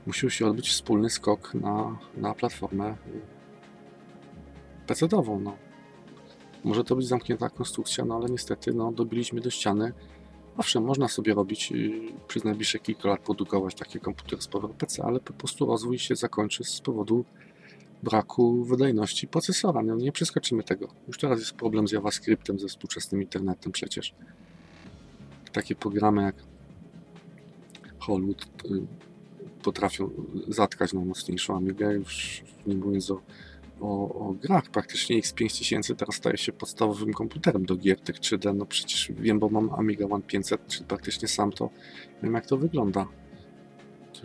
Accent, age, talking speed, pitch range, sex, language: native, 40-59, 140 wpm, 95-115 Hz, male, Polish